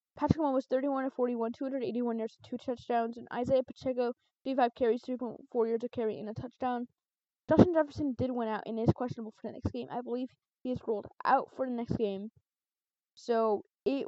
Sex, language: female, English